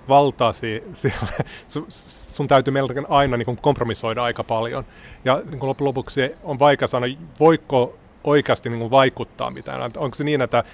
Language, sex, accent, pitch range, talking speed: Finnish, male, native, 115-140 Hz, 115 wpm